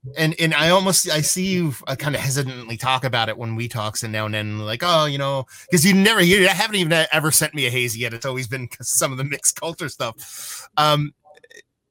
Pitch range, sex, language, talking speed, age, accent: 130-170 Hz, male, English, 235 wpm, 30-49, American